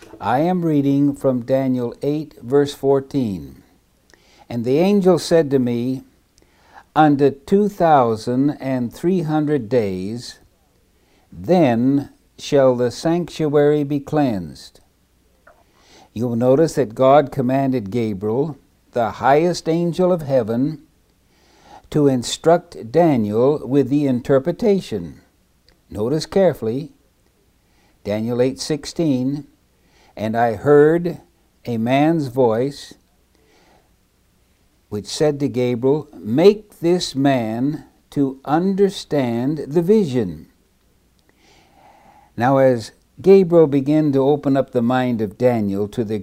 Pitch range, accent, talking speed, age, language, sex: 120-155 Hz, American, 105 wpm, 60-79, English, male